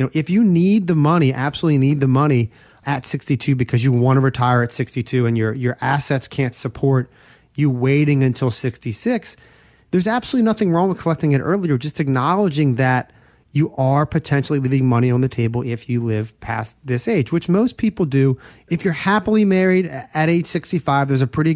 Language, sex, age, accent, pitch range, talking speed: English, male, 30-49, American, 125-160 Hz, 190 wpm